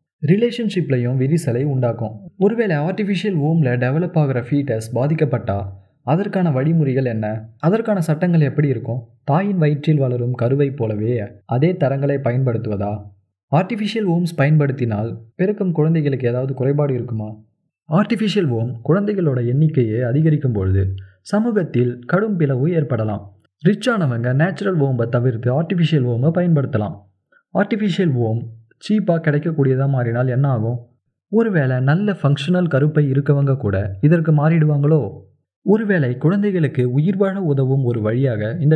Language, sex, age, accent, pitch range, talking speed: Tamil, male, 30-49, native, 120-170 Hz, 115 wpm